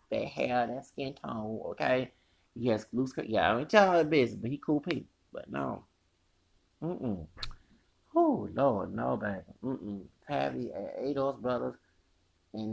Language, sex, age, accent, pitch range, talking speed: English, male, 30-49, American, 110-145 Hz, 155 wpm